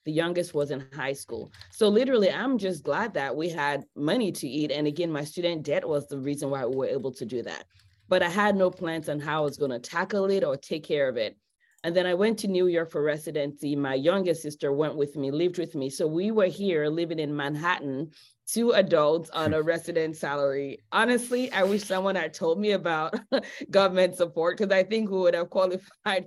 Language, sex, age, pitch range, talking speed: English, female, 20-39, 155-205 Hz, 220 wpm